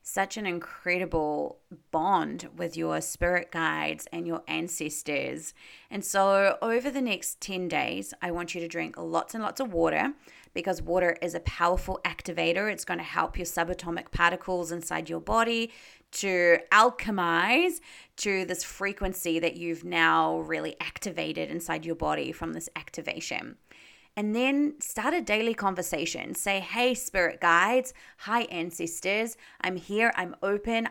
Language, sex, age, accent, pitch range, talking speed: English, female, 30-49, Australian, 170-225 Hz, 150 wpm